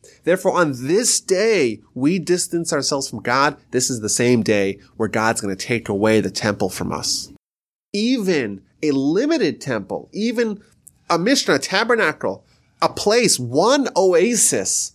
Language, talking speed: English, 150 wpm